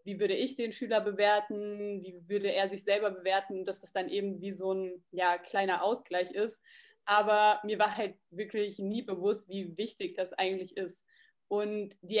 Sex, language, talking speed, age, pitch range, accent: female, German, 175 wpm, 20-39, 195-215 Hz, German